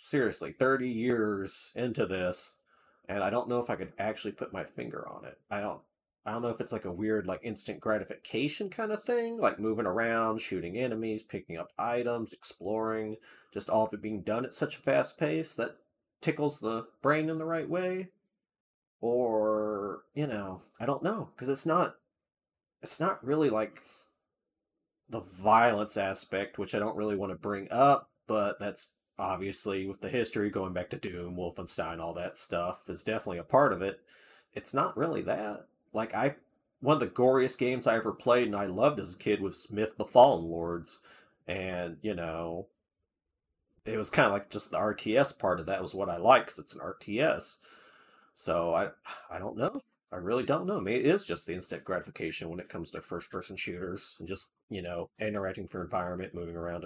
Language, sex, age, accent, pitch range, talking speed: English, male, 30-49, American, 95-125 Hz, 195 wpm